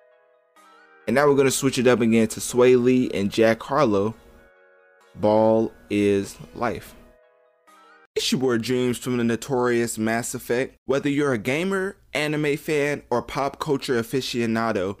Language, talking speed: English, 150 wpm